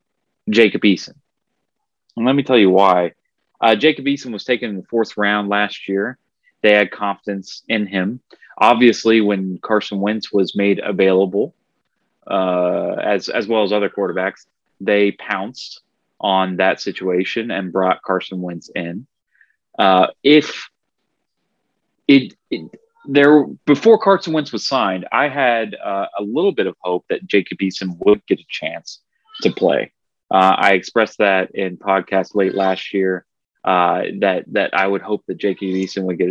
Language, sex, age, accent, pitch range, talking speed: English, male, 30-49, American, 95-115 Hz, 155 wpm